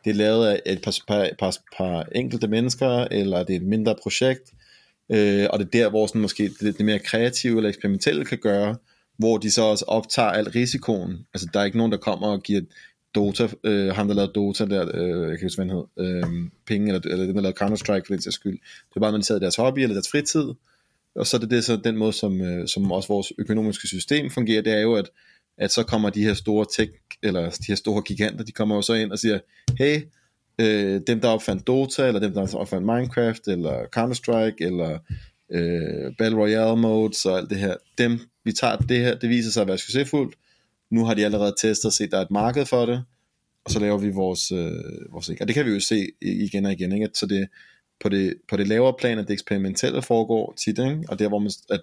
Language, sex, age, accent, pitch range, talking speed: Danish, male, 30-49, native, 100-115 Hz, 240 wpm